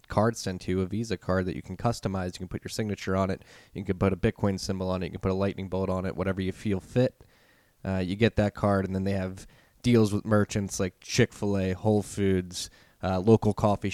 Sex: male